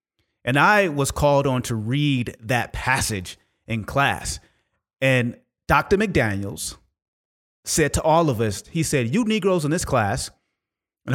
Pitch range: 120-165 Hz